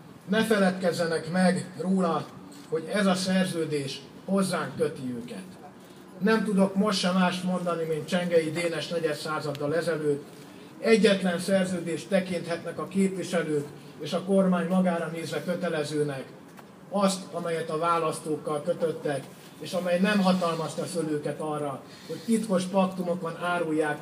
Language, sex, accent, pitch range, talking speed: English, male, Finnish, 160-190 Hz, 120 wpm